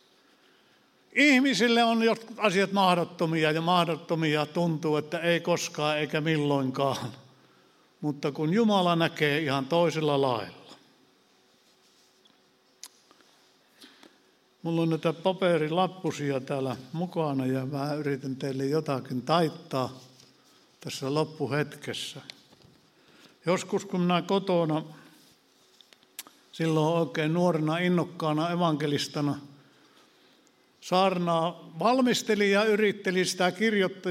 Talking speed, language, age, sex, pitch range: 85 wpm, Finnish, 60-79, male, 150-185 Hz